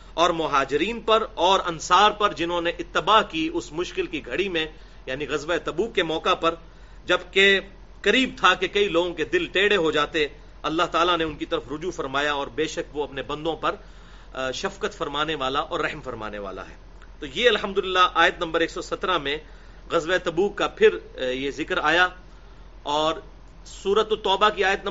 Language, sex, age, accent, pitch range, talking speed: English, male, 40-59, Indian, 160-205 Hz, 135 wpm